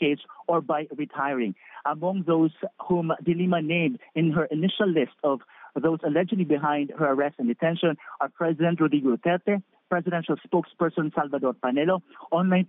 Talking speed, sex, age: 140 wpm, male, 40-59